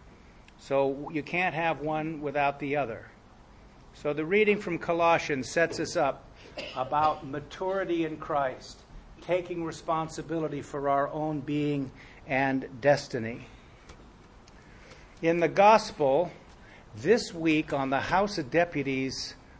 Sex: male